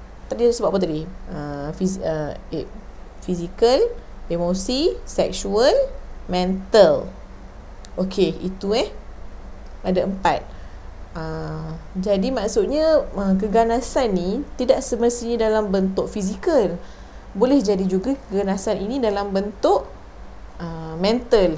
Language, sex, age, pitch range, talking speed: Malay, female, 30-49, 185-240 Hz, 105 wpm